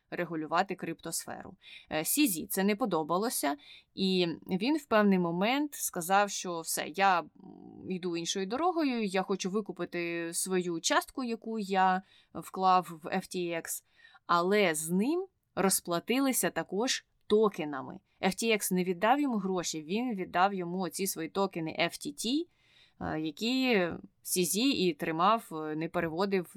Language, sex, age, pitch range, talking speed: Ukrainian, female, 20-39, 165-215 Hz, 115 wpm